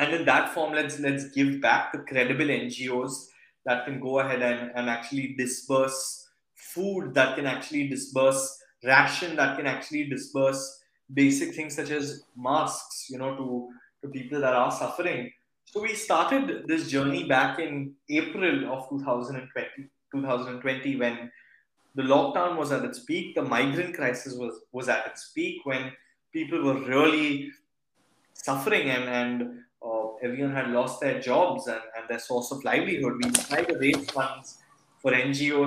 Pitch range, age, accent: 125-155 Hz, 20-39, native